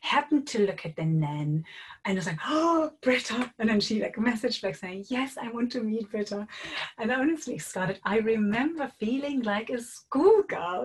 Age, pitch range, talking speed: 30-49, 170-235 Hz, 195 wpm